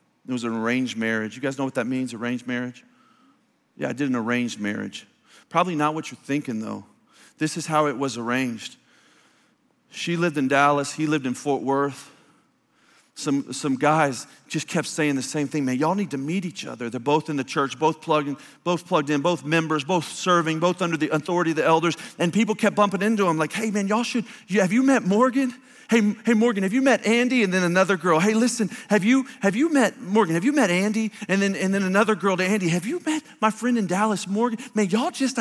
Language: English